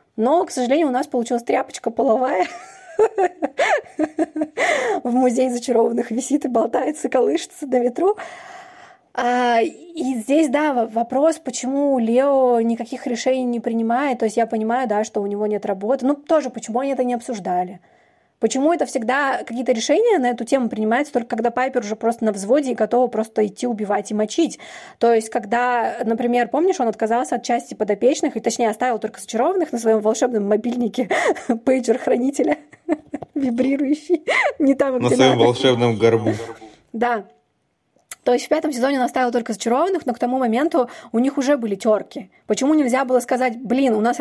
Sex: female